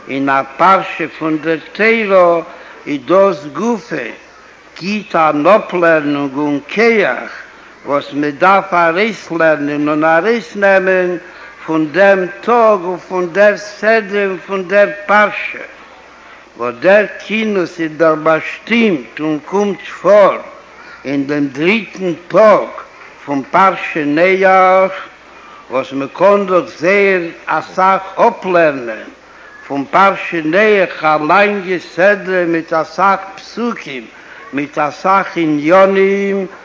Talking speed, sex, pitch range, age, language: 85 wpm, male, 160-205 Hz, 60-79, Hebrew